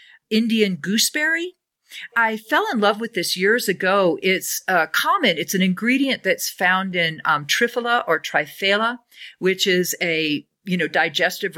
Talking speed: 150 wpm